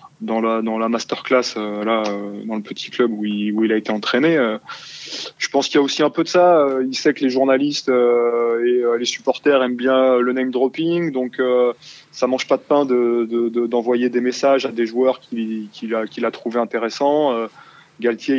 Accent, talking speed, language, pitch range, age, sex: French, 230 wpm, French, 120-145 Hz, 20-39, male